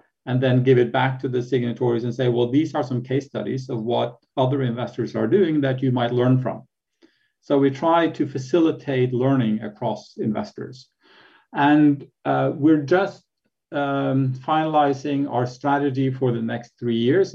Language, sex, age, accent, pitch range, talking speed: English, male, 50-69, Norwegian, 110-135 Hz, 165 wpm